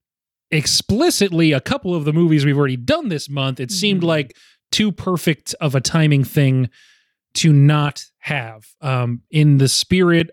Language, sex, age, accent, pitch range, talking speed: English, male, 30-49, American, 125-155 Hz, 155 wpm